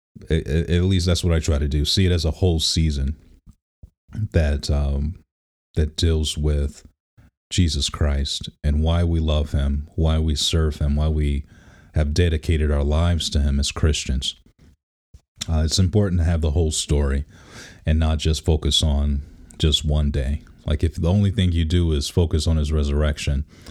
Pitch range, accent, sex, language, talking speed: 75-90 Hz, American, male, English, 170 wpm